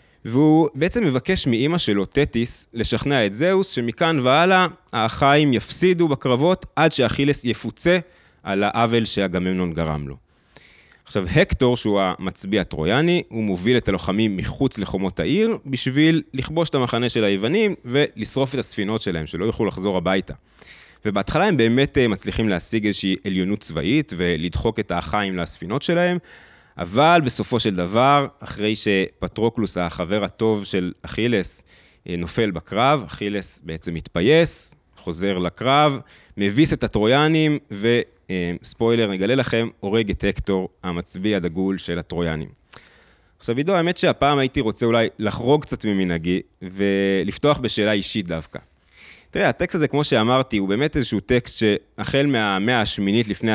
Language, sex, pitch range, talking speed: Hebrew, male, 95-140 Hz, 130 wpm